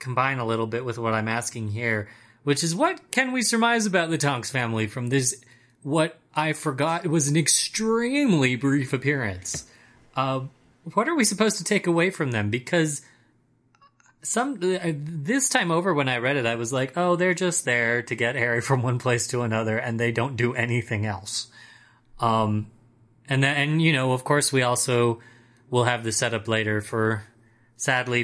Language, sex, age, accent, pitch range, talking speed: English, male, 30-49, American, 115-155 Hz, 185 wpm